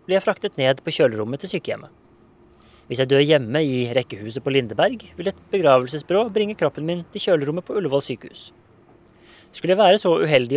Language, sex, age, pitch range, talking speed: English, male, 20-39, 125-175 Hz, 175 wpm